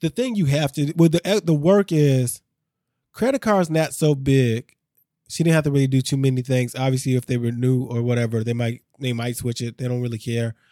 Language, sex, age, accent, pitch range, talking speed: English, male, 20-39, American, 125-150 Hz, 235 wpm